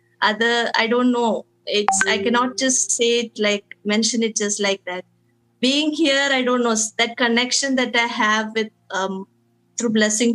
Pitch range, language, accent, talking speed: 205-235 Hz, Malayalam, native, 175 wpm